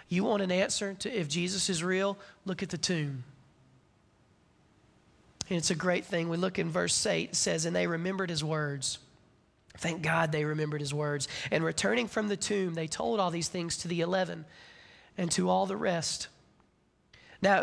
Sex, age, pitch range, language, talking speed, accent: male, 30-49, 165-195 Hz, English, 185 wpm, American